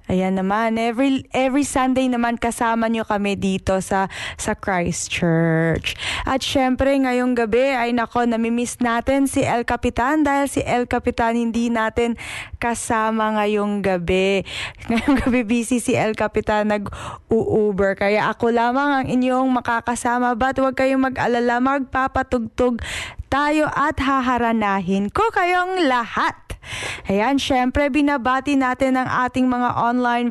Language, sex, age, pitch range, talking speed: Filipino, female, 20-39, 210-255 Hz, 130 wpm